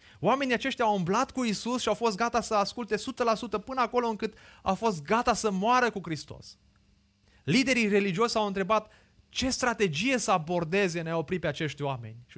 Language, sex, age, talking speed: Romanian, male, 30-49, 185 wpm